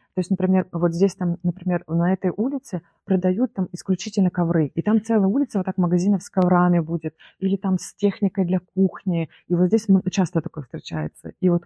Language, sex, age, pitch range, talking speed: Russian, female, 20-39, 165-200 Hz, 195 wpm